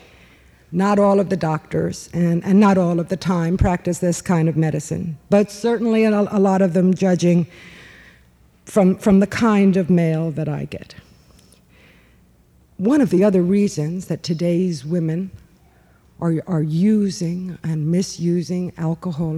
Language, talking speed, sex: English, 145 wpm, female